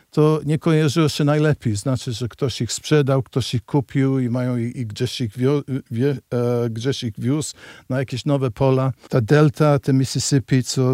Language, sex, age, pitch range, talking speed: Polish, male, 50-69, 120-135 Hz, 190 wpm